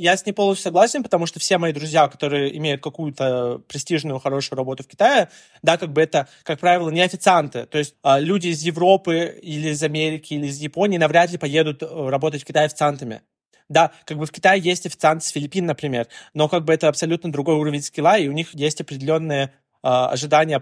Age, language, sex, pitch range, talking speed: 20-39, Russian, male, 145-175 Hz, 200 wpm